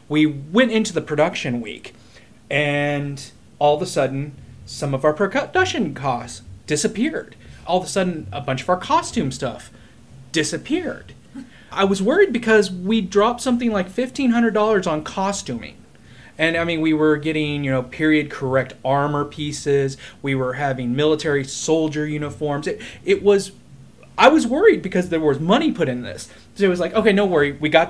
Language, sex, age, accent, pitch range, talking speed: English, male, 30-49, American, 130-185 Hz, 170 wpm